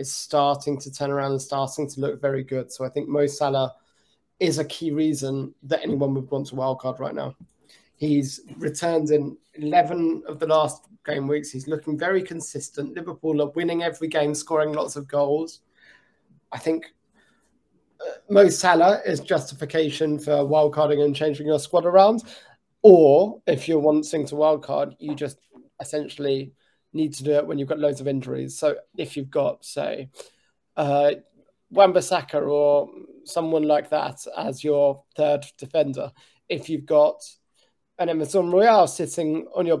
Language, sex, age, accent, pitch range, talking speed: English, male, 20-39, British, 145-165 Hz, 160 wpm